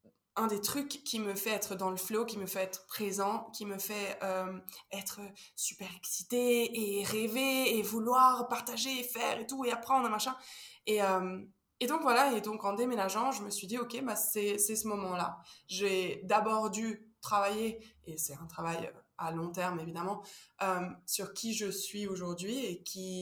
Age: 20-39